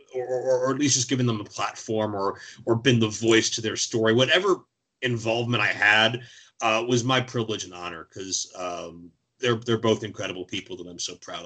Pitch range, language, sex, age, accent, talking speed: 100-120 Hz, English, male, 30-49, American, 205 wpm